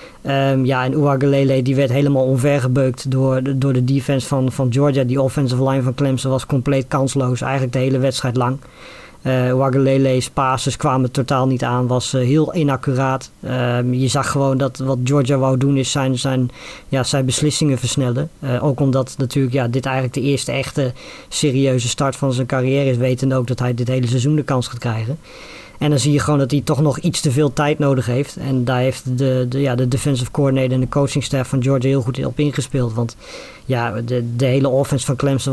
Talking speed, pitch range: 210 wpm, 130-140 Hz